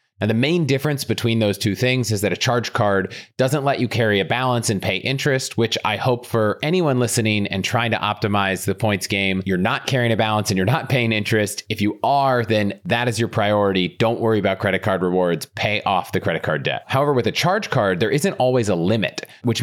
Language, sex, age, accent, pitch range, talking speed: English, male, 30-49, American, 100-125 Hz, 230 wpm